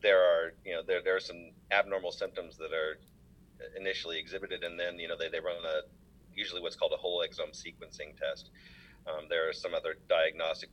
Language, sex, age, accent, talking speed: English, male, 30-49, American, 200 wpm